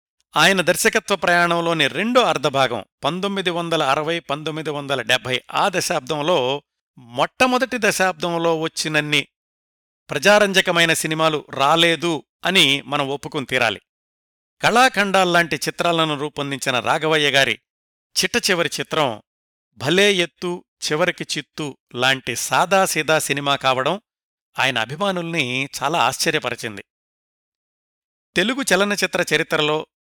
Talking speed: 90 wpm